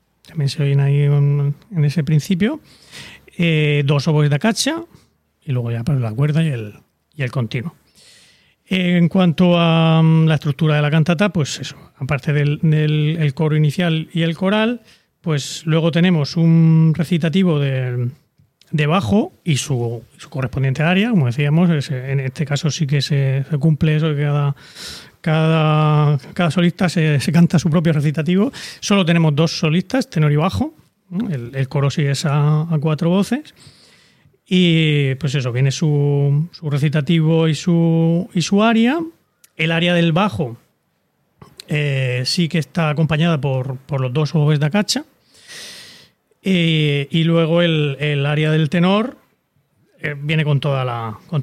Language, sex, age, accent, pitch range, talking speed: Spanish, male, 30-49, Spanish, 145-170 Hz, 160 wpm